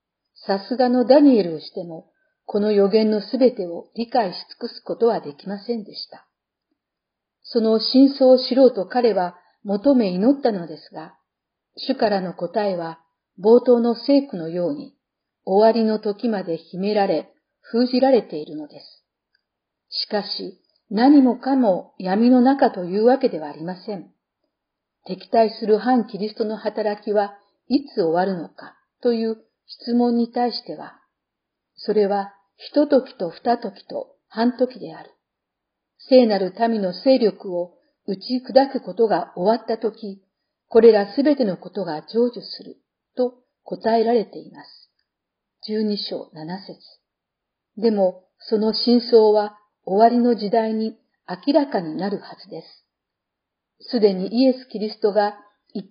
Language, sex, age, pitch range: Japanese, female, 50-69, 195-250 Hz